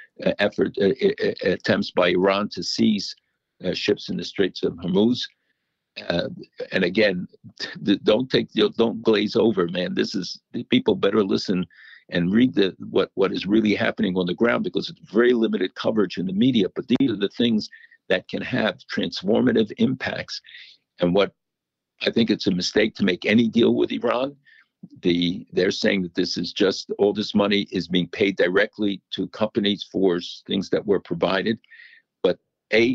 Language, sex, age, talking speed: English, male, 50-69, 175 wpm